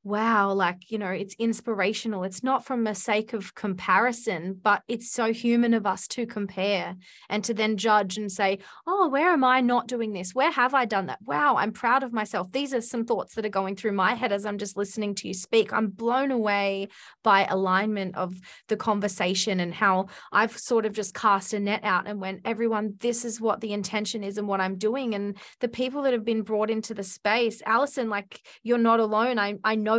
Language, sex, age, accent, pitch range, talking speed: English, female, 20-39, Australian, 205-235 Hz, 220 wpm